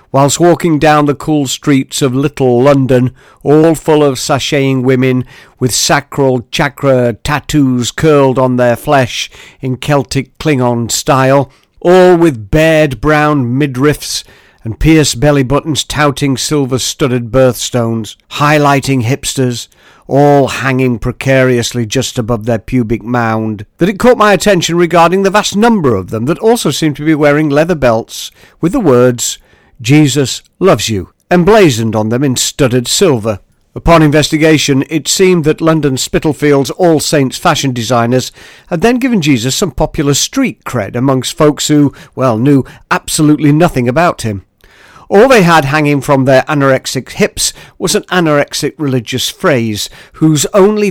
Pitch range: 125-160 Hz